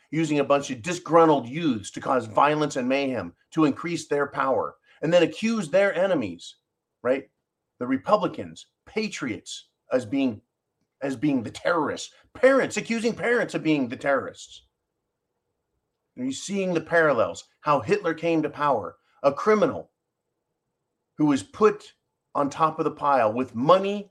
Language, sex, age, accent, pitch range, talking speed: English, male, 40-59, American, 130-180 Hz, 145 wpm